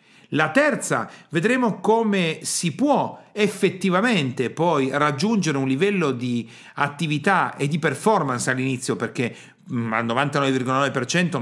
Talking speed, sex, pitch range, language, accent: 105 wpm, male, 130-180 Hz, Italian, native